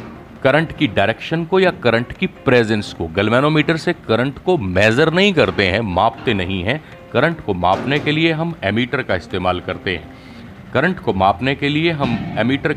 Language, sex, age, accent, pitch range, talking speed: Hindi, male, 40-59, native, 100-140 Hz, 180 wpm